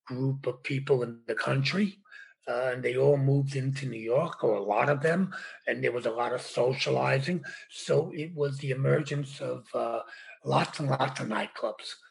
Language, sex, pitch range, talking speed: English, male, 130-165 Hz, 190 wpm